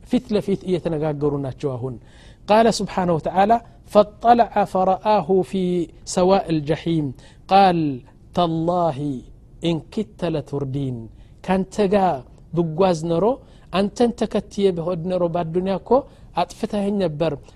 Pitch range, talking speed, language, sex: 165-215 Hz, 95 wpm, Amharic, male